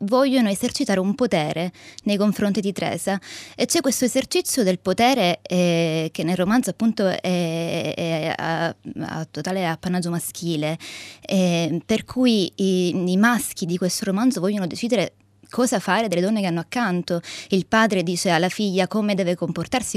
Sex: female